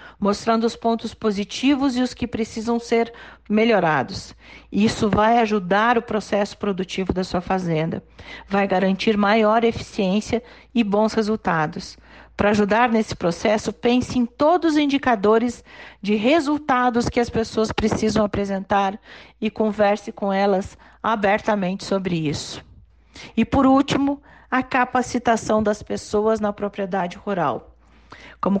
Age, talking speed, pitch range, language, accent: 40-59, 125 wpm, 200-245 Hz, Portuguese, Brazilian